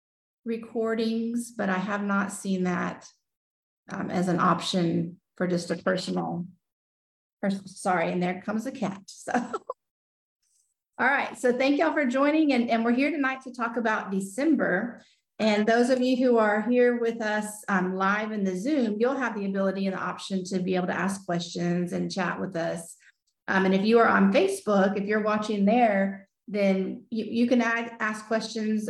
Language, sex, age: English, female, 40-59